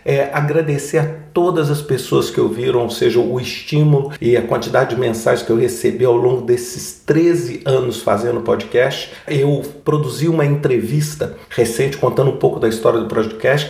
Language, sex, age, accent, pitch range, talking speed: Portuguese, male, 50-69, Brazilian, 125-155 Hz, 170 wpm